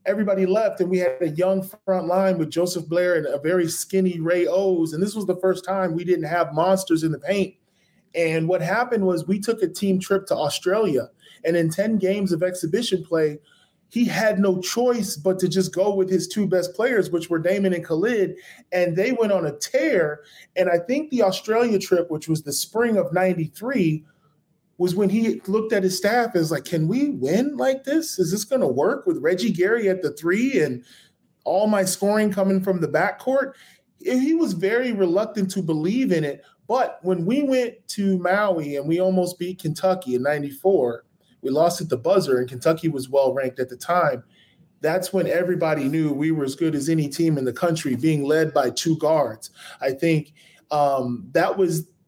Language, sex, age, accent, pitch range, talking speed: English, male, 20-39, American, 165-195 Hz, 200 wpm